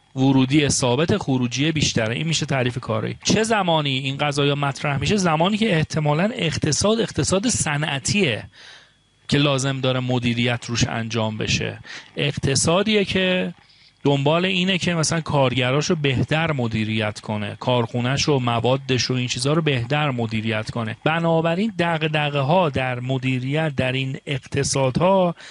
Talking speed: 130 wpm